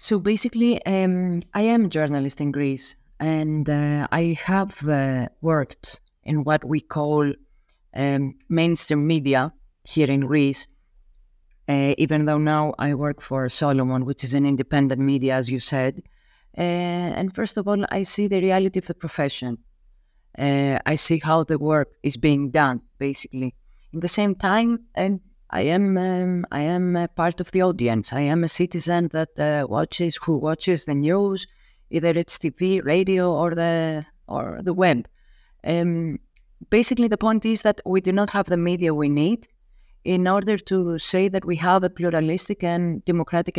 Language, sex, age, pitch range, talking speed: English, female, 30-49, 145-185 Hz, 170 wpm